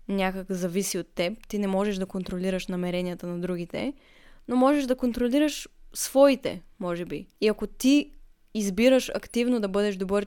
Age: 20-39